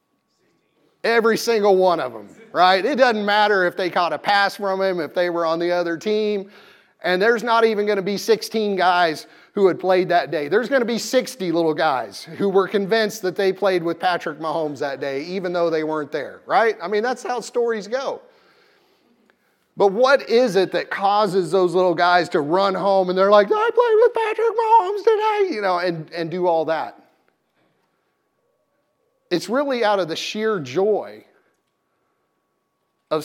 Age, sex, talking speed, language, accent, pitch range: 30-49, male, 185 wpm, English, American, 175-220 Hz